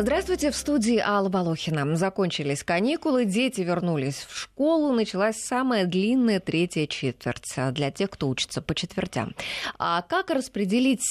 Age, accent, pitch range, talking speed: 20-39, native, 155-230 Hz, 135 wpm